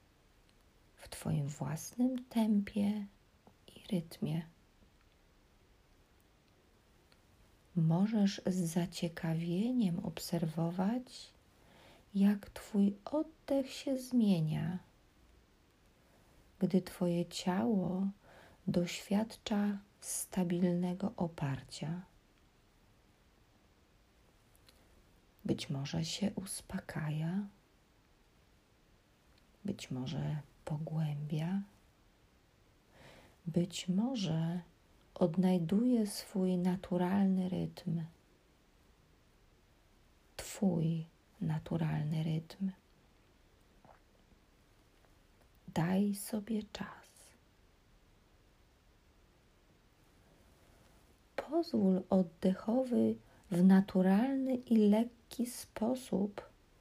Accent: native